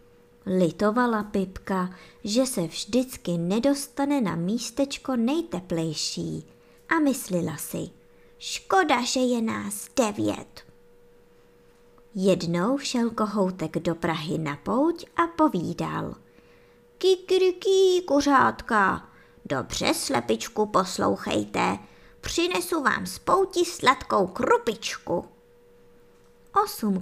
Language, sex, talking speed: Czech, male, 85 wpm